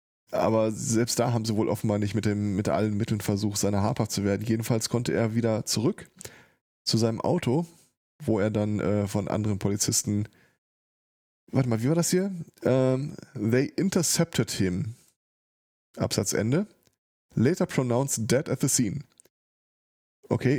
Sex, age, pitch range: male, 20-39, 105-130 Hz